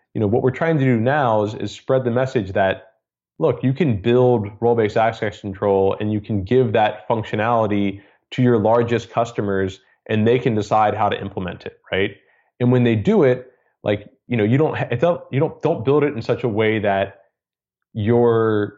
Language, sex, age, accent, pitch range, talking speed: English, male, 20-39, American, 105-125 Hz, 195 wpm